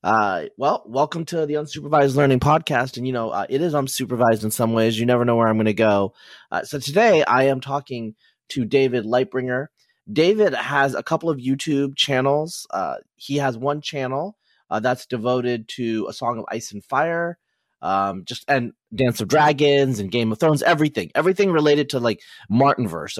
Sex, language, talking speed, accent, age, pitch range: male, English, 190 wpm, American, 30-49, 120-150 Hz